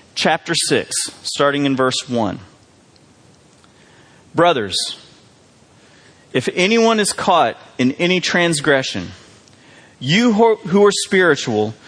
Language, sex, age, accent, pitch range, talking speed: English, male, 40-59, American, 125-180 Hz, 90 wpm